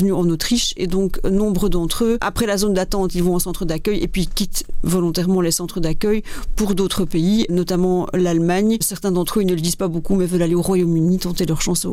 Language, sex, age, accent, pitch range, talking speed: French, female, 40-59, French, 180-205 Hz, 225 wpm